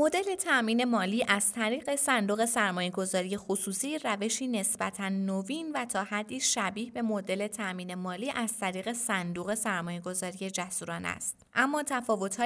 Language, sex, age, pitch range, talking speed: Persian, female, 20-39, 195-250 Hz, 140 wpm